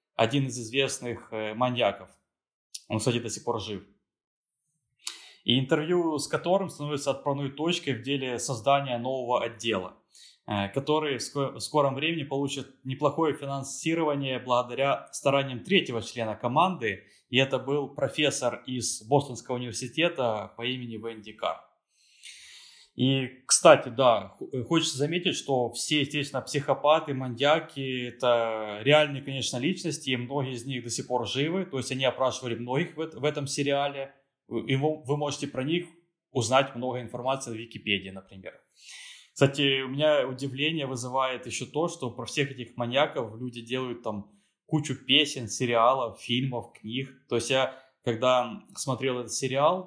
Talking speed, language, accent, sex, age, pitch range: 135 wpm, Ukrainian, native, male, 20-39, 120-145 Hz